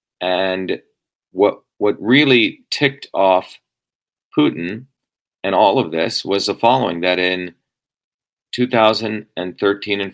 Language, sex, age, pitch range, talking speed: English, male, 40-59, 90-110 Hz, 105 wpm